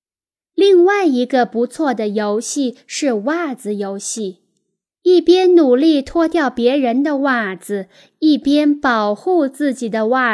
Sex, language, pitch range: female, Chinese, 225-290 Hz